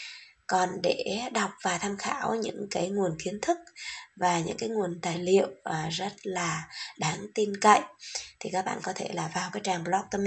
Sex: female